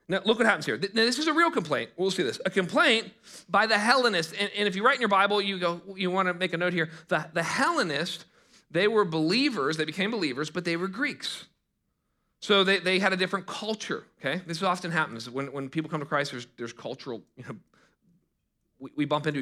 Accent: American